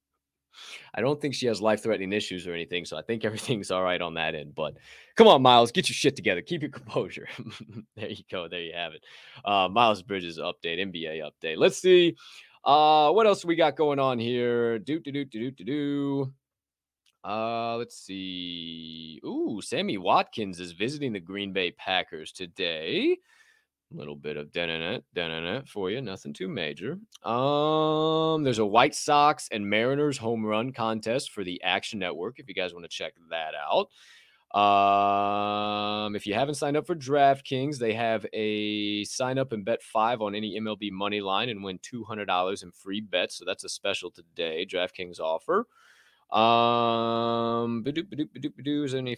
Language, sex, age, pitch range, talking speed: English, male, 20-39, 100-140 Hz, 185 wpm